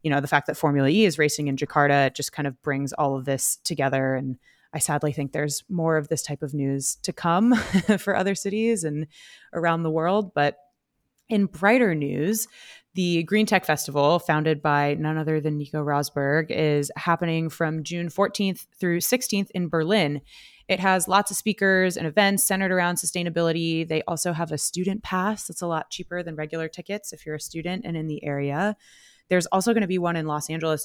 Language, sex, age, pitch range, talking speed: English, female, 20-39, 150-190 Hz, 200 wpm